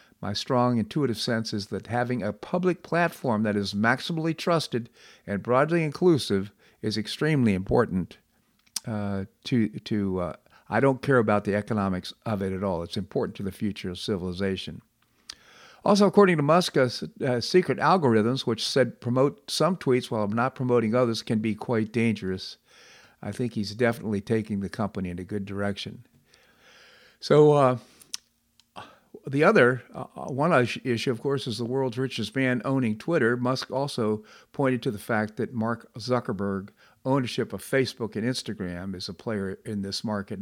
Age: 50-69